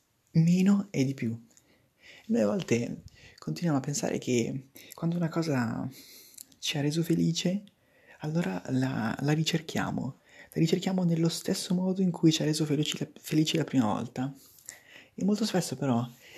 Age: 30-49